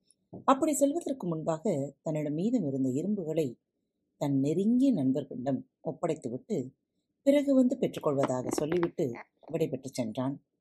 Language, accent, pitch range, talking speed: Tamil, native, 135-230 Hz, 100 wpm